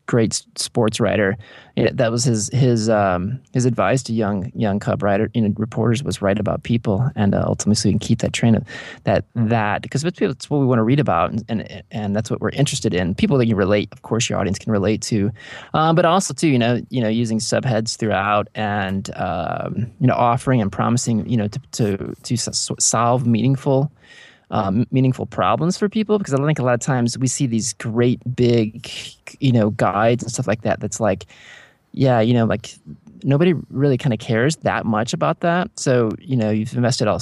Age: 20-39